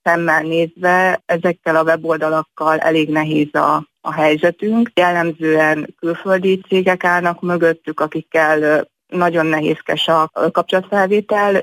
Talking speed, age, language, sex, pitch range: 105 wpm, 30-49, Hungarian, female, 160-175 Hz